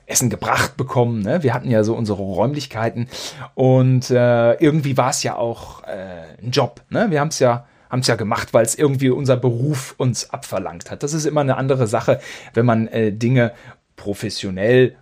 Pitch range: 115-155 Hz